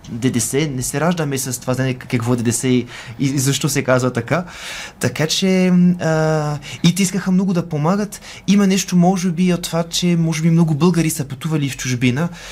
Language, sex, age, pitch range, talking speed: Bulgarian, male, 20-39, 140-180 Hz, 190 wpm